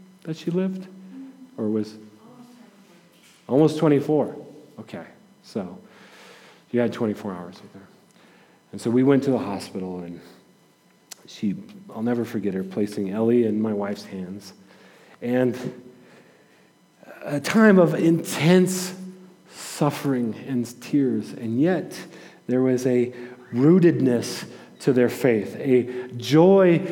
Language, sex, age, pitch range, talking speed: English, male, 40-59, 120-170 Hz, 115 wpm